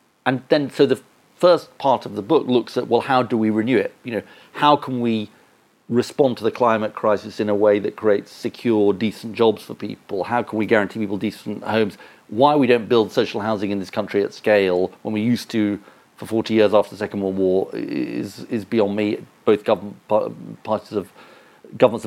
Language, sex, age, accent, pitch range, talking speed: English, male, 40-59, British, 105-120 Hz, 205 wpm